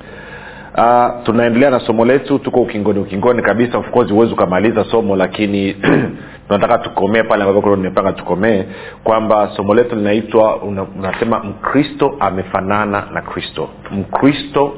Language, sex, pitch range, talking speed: Swahili, male, 100-125 Hz, 125 wpm